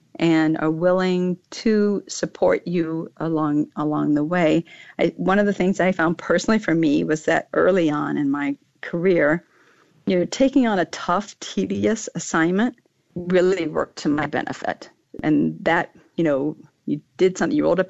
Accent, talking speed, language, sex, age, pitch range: American, 165 wpm, English, female, 50-69, 155-185 Hz